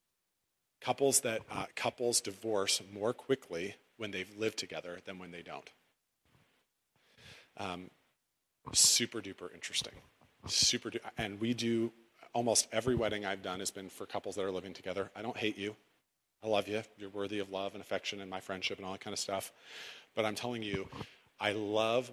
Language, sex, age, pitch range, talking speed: English, male, 40-59, 95-110 Hz, 175 wpm